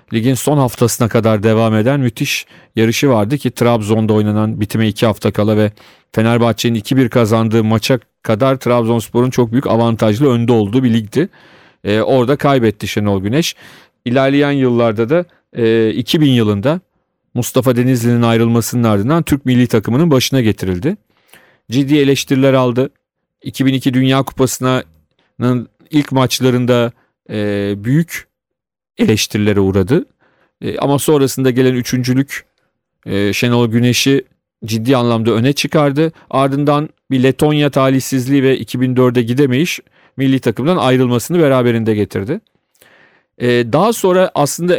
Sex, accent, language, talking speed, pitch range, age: male, native, Turkish, 115 wpm, 115-140 Hz, 40-59